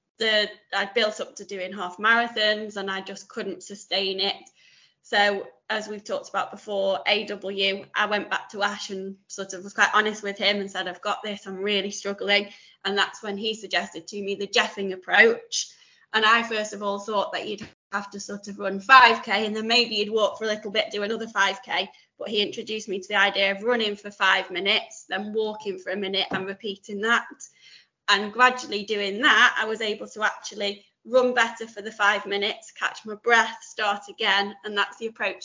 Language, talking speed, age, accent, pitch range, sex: English, 205 wpm, 20-39, British, 195-220 Hz, female